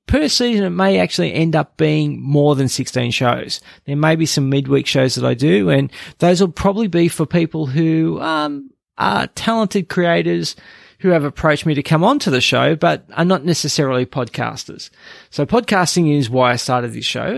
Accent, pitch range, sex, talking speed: Australian, 135-175 Hz, male, 195 wpm